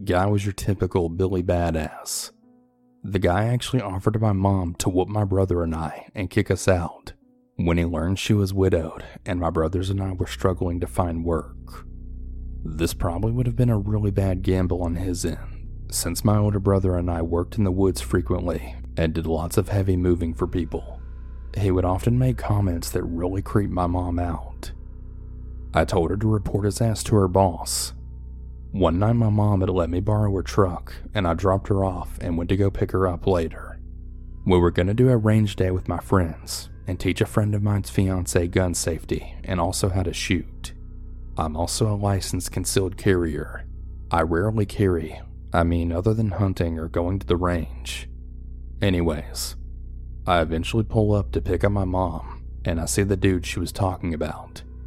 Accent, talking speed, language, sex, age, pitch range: American, 190 wpm, English, male, 30-49, 80-100 Hz